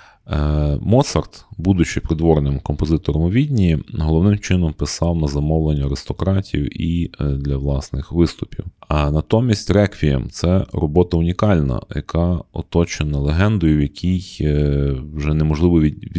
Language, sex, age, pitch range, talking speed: Ukrainian, male, 30-49, 75-95 Hz, 110 wpm